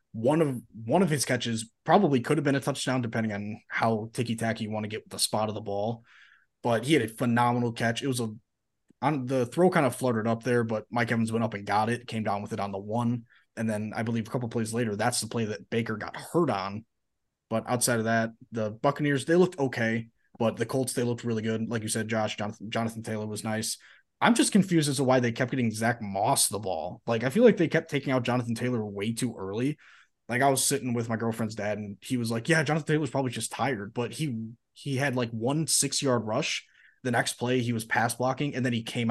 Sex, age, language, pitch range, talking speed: male, 20-39, English, 110-135 Hz, 255 wpm